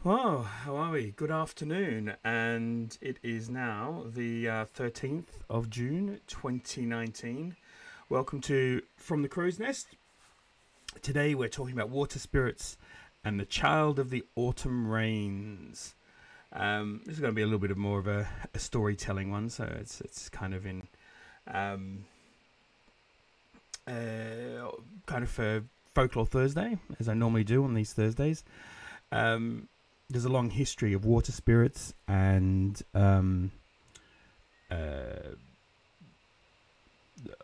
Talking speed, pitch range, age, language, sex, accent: 130 wpm, 100-125 Hz, 30-49, English, male, British